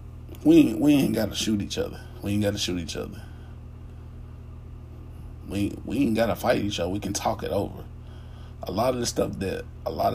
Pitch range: 100-110 Hz